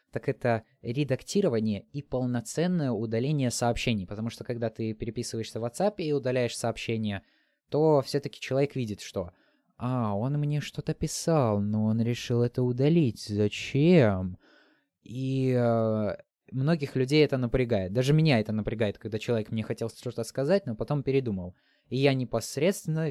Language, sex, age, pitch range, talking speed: Russian, male, 20-39, 115-140 Hz, 145 wpm